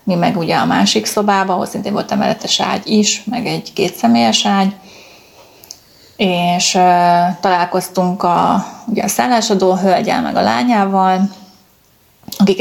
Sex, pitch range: female, 185-225 Hz